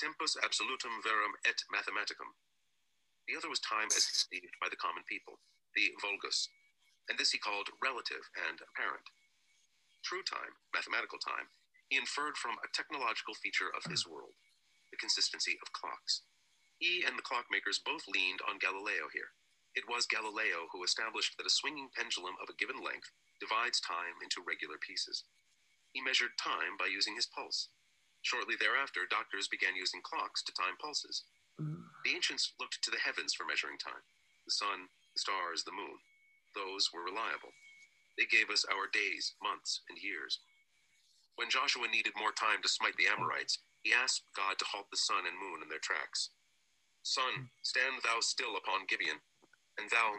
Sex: male